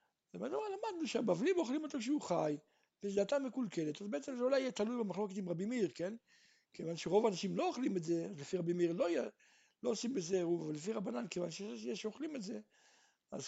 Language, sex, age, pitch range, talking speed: Hebrew, male, 60-79, 165-235 Hz, 185 wpm